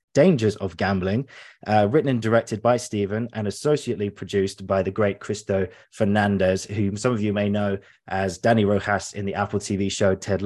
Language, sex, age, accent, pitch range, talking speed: English, male, 20-39, British, 100-120 Hz, 185 wpm